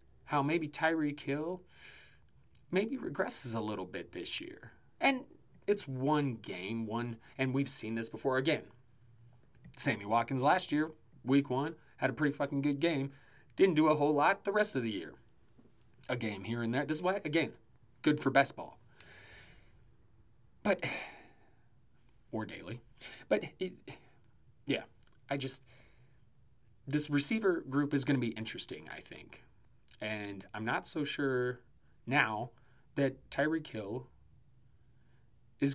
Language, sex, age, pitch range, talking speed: English, male, 30-49, 120-145 Hz, 140 wpm